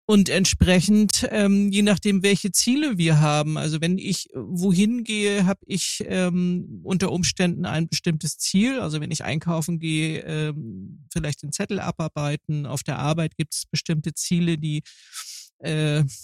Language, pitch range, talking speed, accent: German, 155-185 Hz, 150 wpm, German